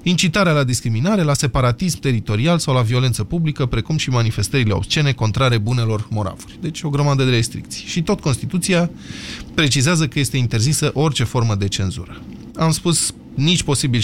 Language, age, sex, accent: Romanian, 20-39, male, native